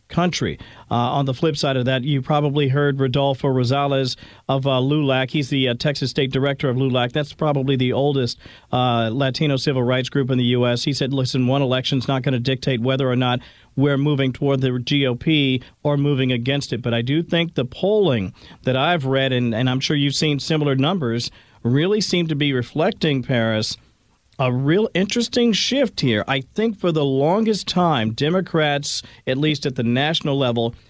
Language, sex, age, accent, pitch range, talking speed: English, male, 40-59, American, 125-150 Hz, 190 wpm